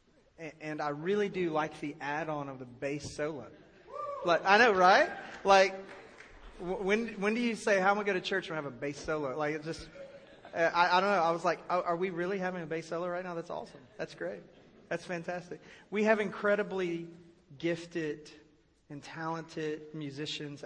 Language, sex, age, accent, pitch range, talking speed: English, male, 30-49, American, 150-185 Hz, 185 wpm